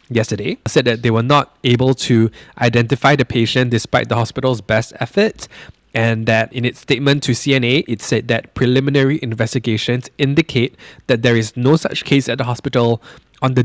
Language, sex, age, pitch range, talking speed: English, male, 20-39, 120-145 Hz, 175 wpm